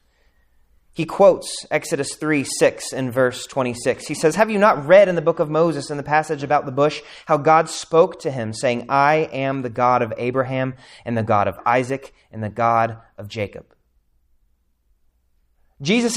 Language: English